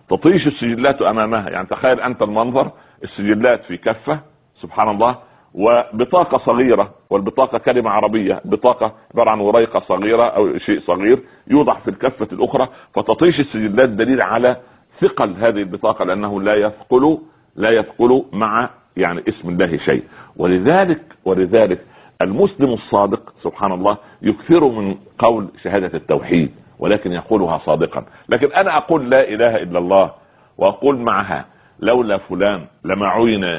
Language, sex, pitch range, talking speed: Arabic, male, 100-120 Hz, 130 wpm